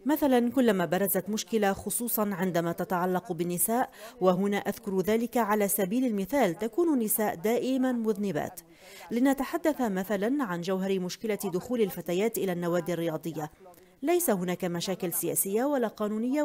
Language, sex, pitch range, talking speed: Arabic, female, 180-255 Hz, 125 wpm